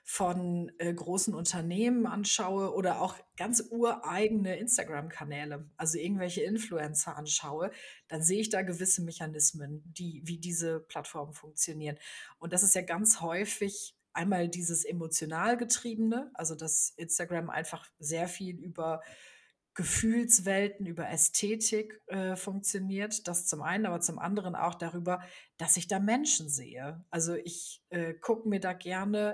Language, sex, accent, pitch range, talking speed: German, female, German, 165-205 Hz, 135 wpm